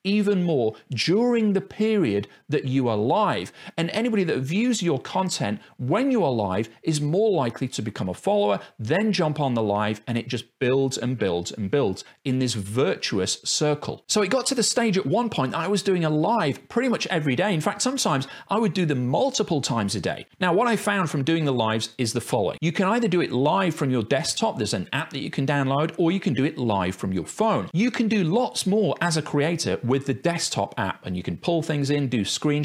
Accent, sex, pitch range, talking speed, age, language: British, male, 120-190 Hz, 240 wpm, 40-59, English